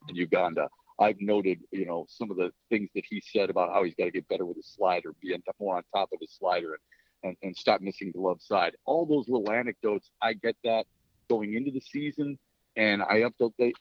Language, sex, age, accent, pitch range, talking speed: English, male, 50-69, American, 100-120 Hz, 225 wpm